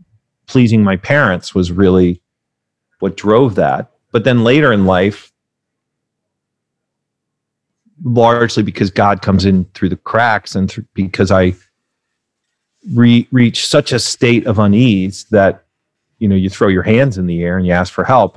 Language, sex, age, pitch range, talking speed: English, male, 30-49, 95-120 Hz, 145 wpm